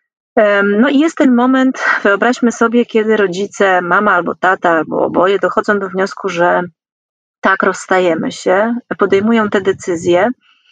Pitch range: 190-250 Hz